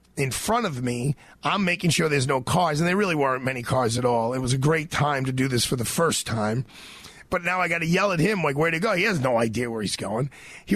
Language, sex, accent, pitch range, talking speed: English, male, American, 130-170 Hz, 280 wpm